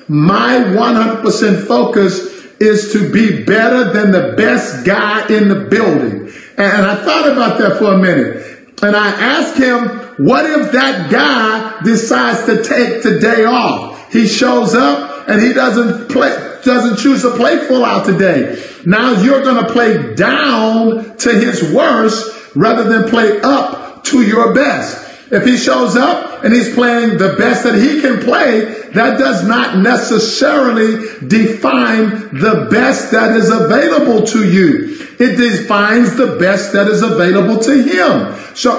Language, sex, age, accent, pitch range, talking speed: English, male, 50-69, American, 215-250 Hz, 155 wpm